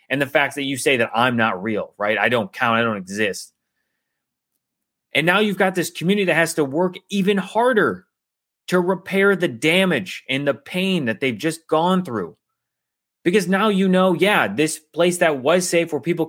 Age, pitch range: 30-49, 135-185 Hz